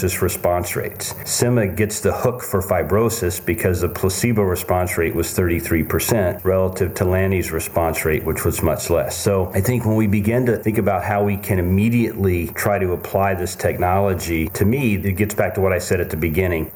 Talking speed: 195 wpm